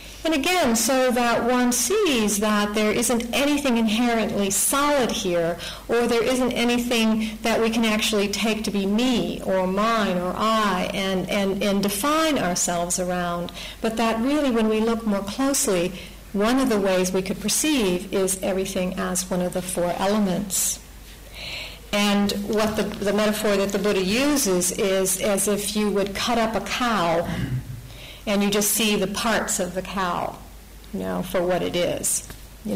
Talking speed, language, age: 170 wpm, English, 50-69